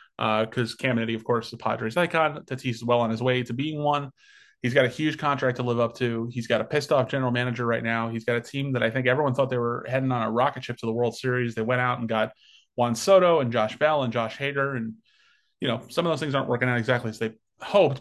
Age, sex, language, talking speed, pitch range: 30-49, male, English, 275 wpm, 115-135 Hz